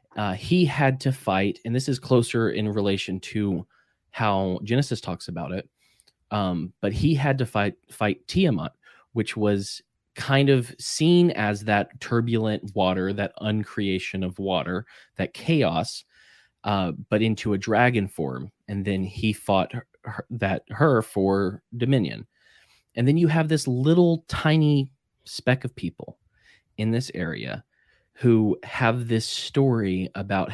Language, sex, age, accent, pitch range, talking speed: English, male, 20-39, American, 100-120 Hz, 145 wpm